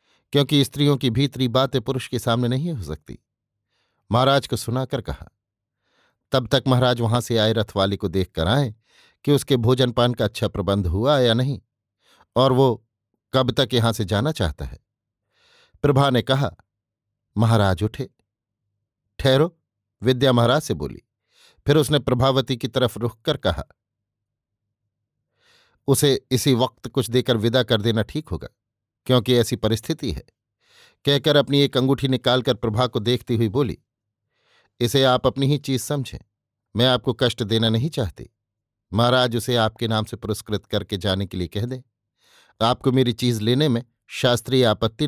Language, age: Hindi, 50-69